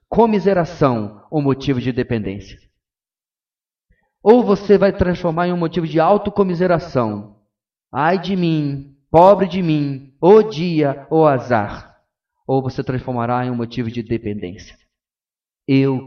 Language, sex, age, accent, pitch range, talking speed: Portuguese, male, 30-49, Brazilian, 115-170 Hz, 125 wpm